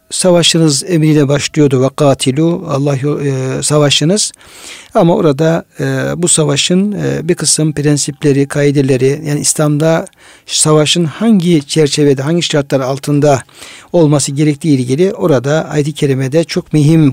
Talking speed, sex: 115 wpm, male